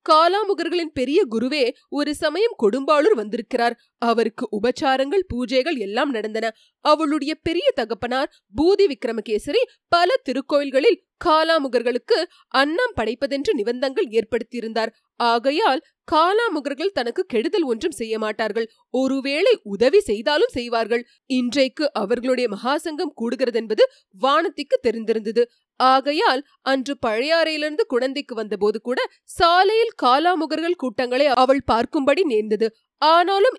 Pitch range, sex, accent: 240-355 Hz, female, native